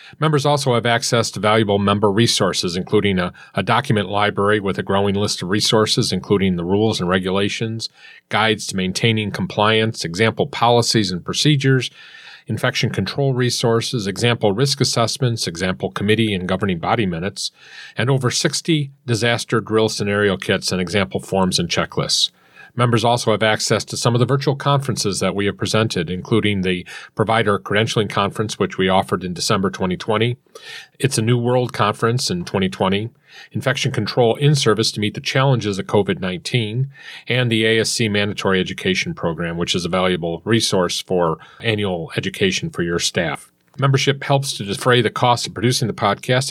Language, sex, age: English, male, 40-59